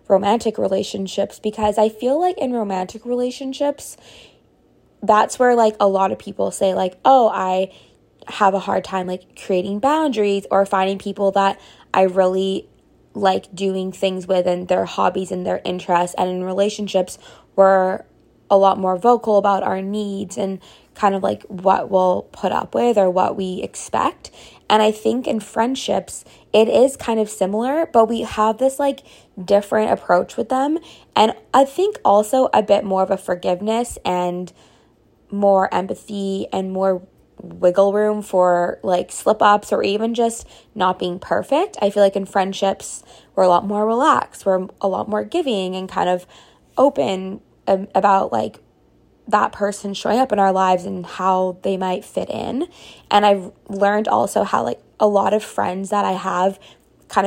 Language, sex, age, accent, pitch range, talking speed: English, female, 20-39, American, 190-215 Hz, 170 wpm